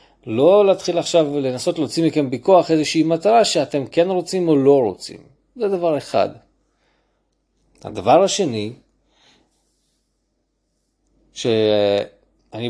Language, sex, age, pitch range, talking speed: Hebrew, male, 40-59, 115-175 Hz, 100 wpm